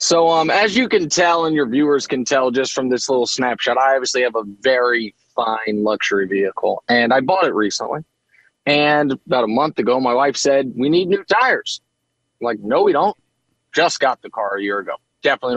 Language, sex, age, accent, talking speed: English, male, 30-49, American, 210 wpm